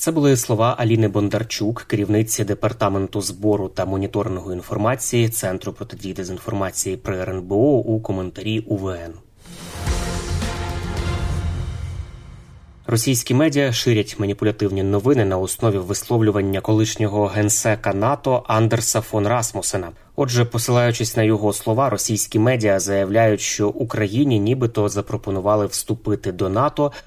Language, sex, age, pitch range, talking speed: Ukrainian, male, 20-39, 100-115 Hz, 110 wpm